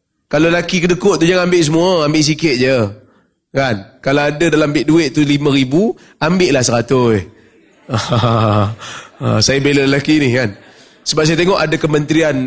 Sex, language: male, Malay